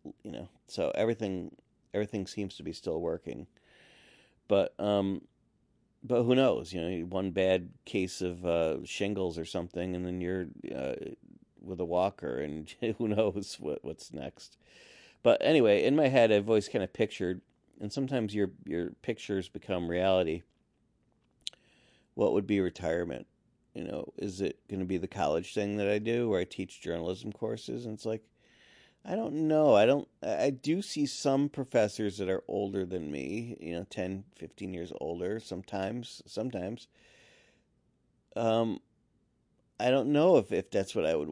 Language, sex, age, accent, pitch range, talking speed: English, male, 40-59, American, 95-115 Hz, 165 wpm